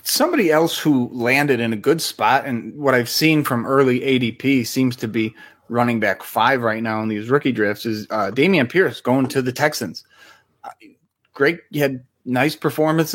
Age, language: 30-49, English